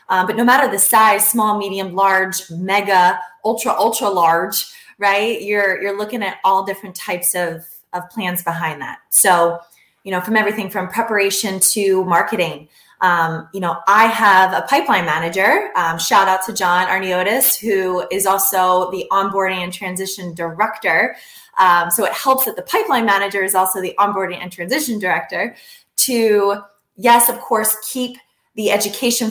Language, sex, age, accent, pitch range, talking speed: English, female, 20-39, American, 180-225 Hz, 160 wpm